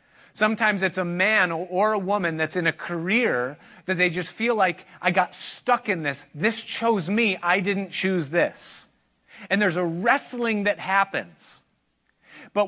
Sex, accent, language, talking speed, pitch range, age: male, American, English, 165 wpm, 155-210 Hz, 30-49